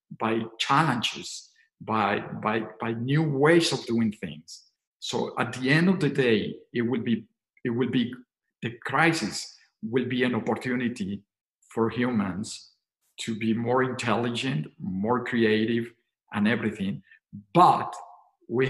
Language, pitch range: English, 120-145 Hz